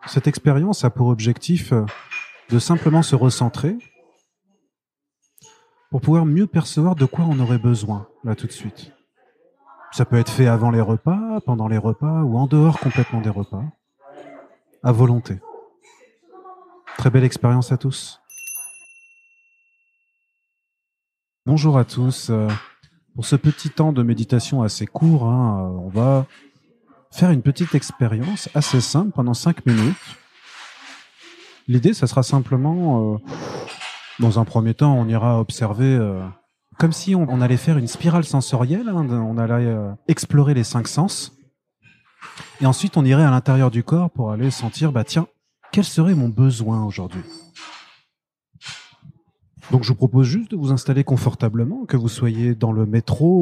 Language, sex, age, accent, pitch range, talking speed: French, male, 30-49, French, 120-160 Hz, 145 wpm